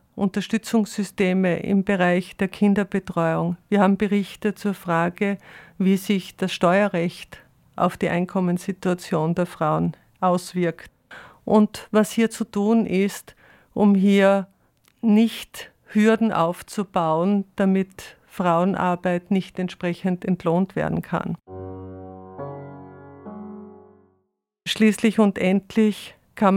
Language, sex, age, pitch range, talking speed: German, female, 50-69, 175-200 Hz, 95 wpm